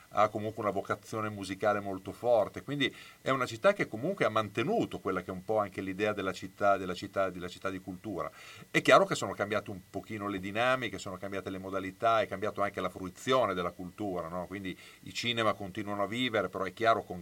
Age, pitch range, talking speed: 40-59, 95-125 Hz, 215 wpm